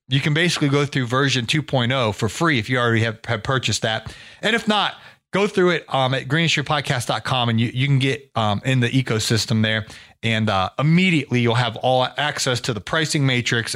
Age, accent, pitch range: 30-49, American, 120-160 Hz